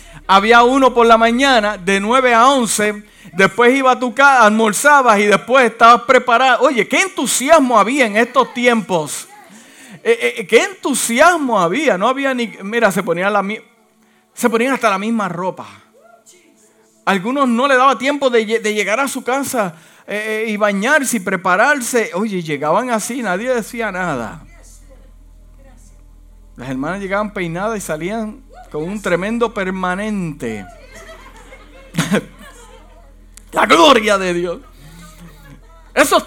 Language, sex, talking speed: Spanish, male, 135 wpm